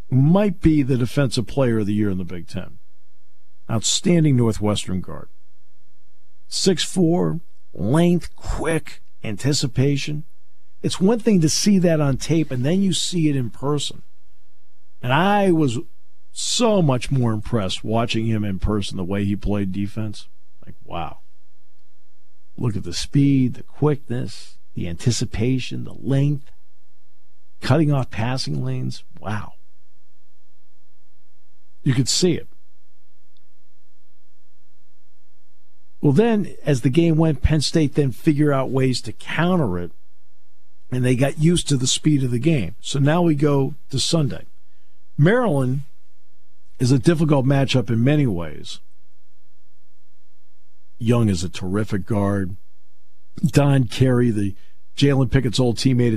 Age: 50-69